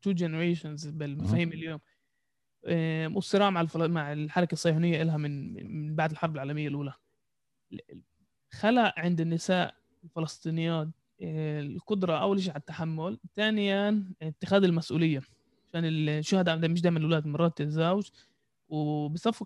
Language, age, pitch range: Arabic, 20-39, 160-195 Hz